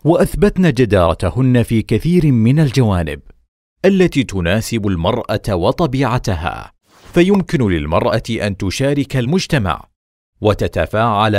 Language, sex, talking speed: Arabic, male, 85 wpm